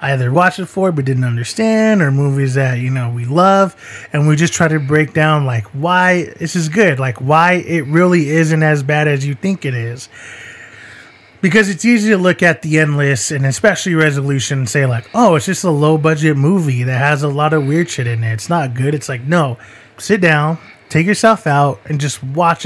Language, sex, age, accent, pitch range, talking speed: English, male, 20-39, American, 130-170 Hz, 215 wpm